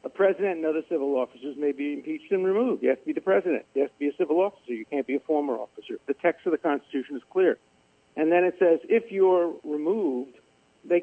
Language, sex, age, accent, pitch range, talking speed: English, male, 50-69, American, 135-190 Hz, 245 wpm